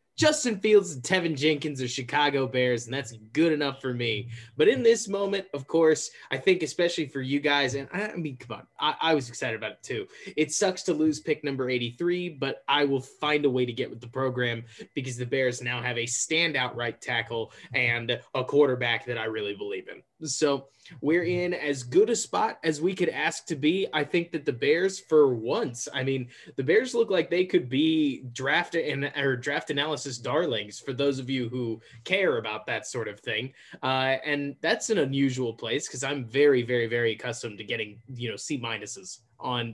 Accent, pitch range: American, 125-165 Hz